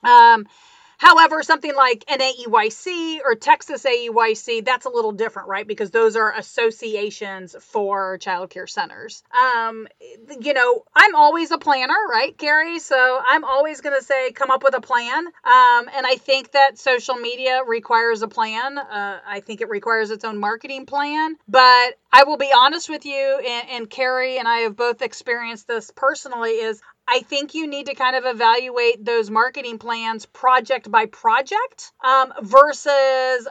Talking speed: 170 wpm